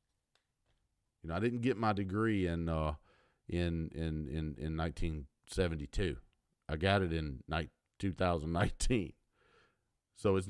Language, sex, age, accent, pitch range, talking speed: English, male, 50-69, American, 80-115 Hz, 115 wpm